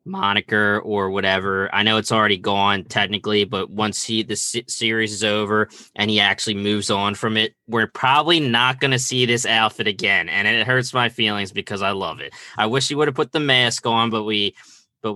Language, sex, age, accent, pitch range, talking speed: English, male, 20-39, American, 110-140 Hz, 205 wpm